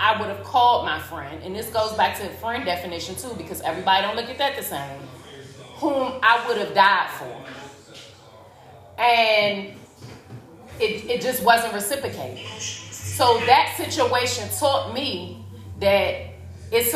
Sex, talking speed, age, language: female, 150 wpm, 30-49, English